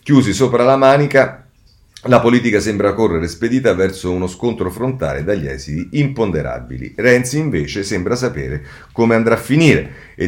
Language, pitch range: Italian, 90-125 Hz